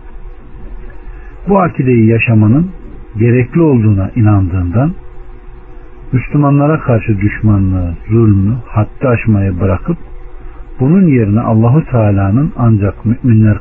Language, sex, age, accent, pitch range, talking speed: Turkish, male, 60-79, native, 85-125 Hz, 85 wpm